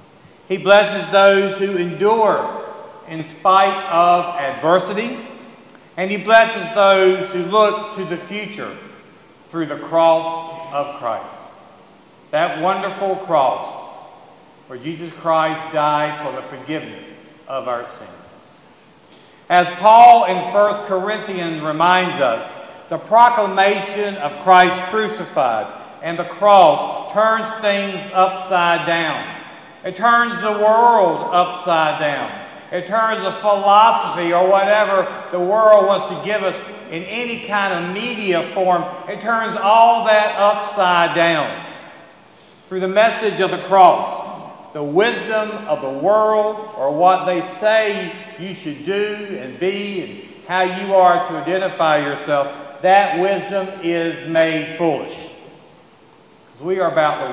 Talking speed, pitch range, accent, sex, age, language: 130 wpm, 170-205 Hz, American, male, 50-69, English